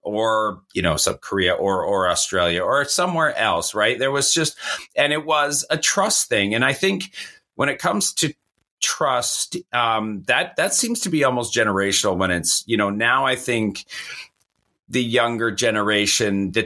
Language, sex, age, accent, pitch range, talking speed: English, male, 40-59, American, 105-130 Hz, 175 wpm